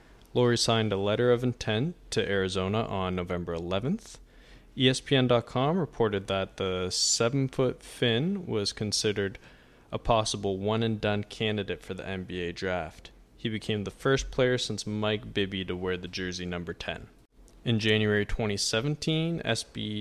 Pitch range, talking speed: 95-115 Hz, 130 wpm